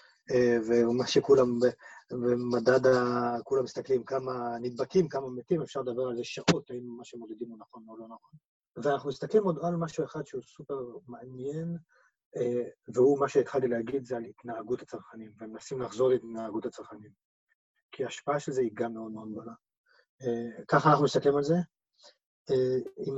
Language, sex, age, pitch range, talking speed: Hebrew, male, 30-49, 120-145 Hz, 155 wpm